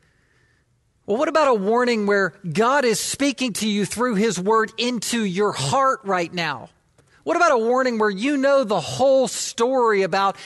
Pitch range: 190-245 Hz